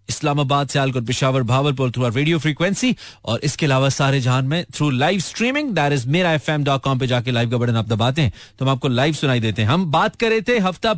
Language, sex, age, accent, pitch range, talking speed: Hindi, male, 30-49, native, 130-180 Hz, 170 wpm